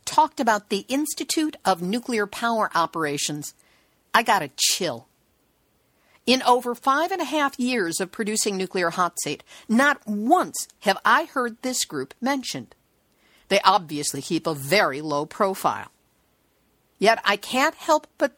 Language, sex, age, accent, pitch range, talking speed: English, female, 50-69, American, 190-285 Hz, 145 wpm